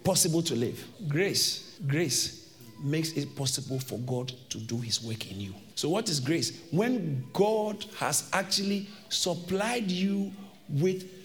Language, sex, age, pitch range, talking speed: English, male, 50-69, 155-220 Hz, 145 wpm